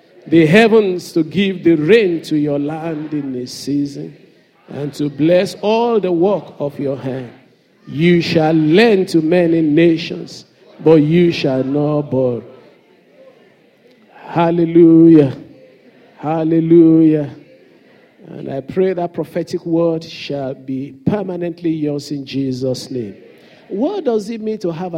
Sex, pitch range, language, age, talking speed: male, 155-210 Hz, English, 50-69, 125 wpm